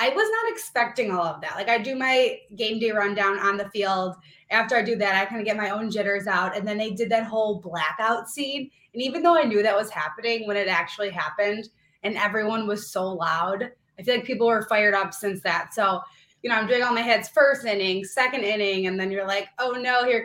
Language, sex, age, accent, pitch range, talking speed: English, female, 20-39, American, 200-250 Hz, 245 wpm